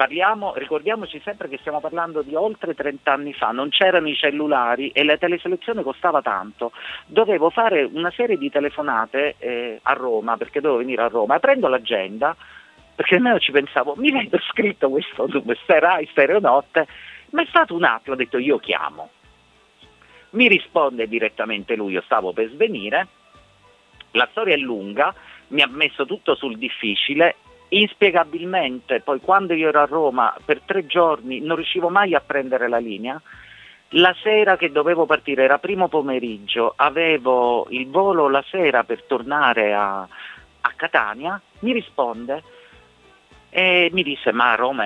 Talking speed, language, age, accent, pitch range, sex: 150 wpm, Italian, 40-59, native, 120-185 Hz, male